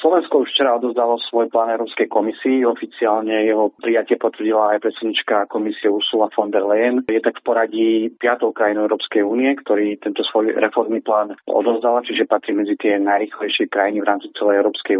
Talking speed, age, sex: 170 wpm, 30-49, male